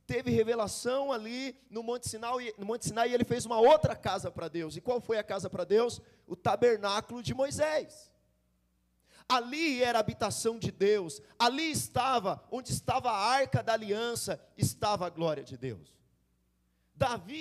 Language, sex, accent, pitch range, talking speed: Portuguese, male, Brazilian, 155-240 Hz, 155 wpm